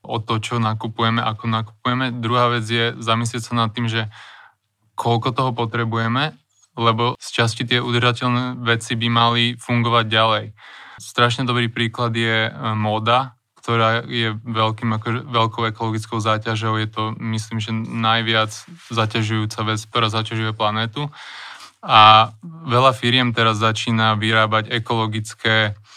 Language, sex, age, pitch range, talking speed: Slovak, male, 20-39, 110-120 Hz, 125 wpm